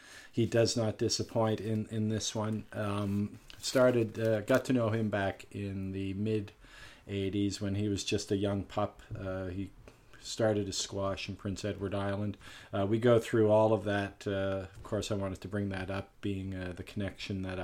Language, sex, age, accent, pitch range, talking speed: English, male, 40-59, American, 95-105 Hz, 190 wpm